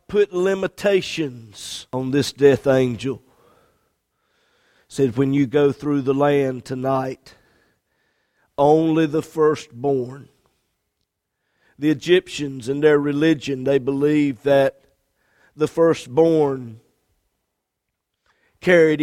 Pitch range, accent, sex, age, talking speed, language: 135-175 Hz, American, male, 50-69, 90 wpm, English